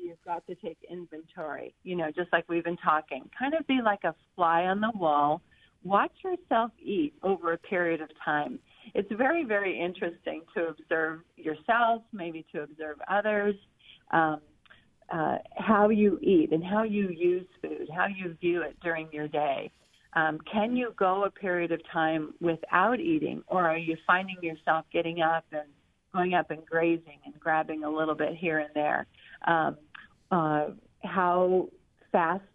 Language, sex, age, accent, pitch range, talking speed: English, female, 40-59, American, 160-205 Hz, 170 wpm